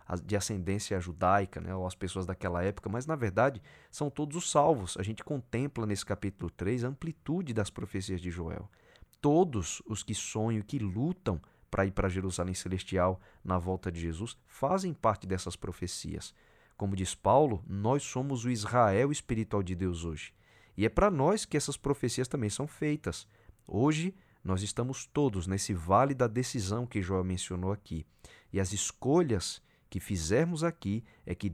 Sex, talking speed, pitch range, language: male, 165 wpm, 95-120 Hz, Portuguese